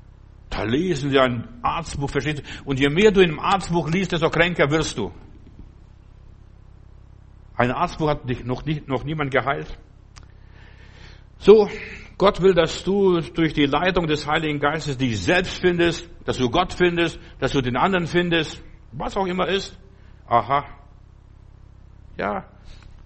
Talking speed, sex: 145 wpm, male